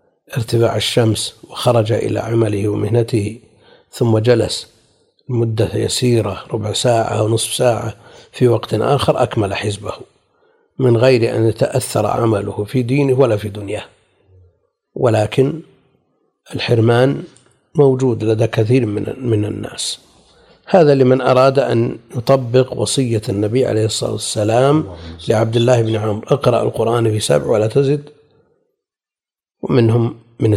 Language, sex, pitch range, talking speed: Arabic, male, 110-130 Hz, 115 wpm